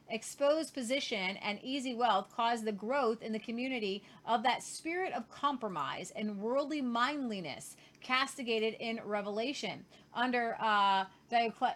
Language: English